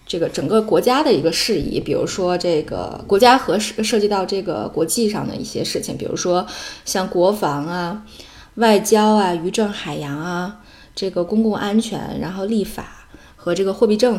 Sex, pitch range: female, 165-215 Hz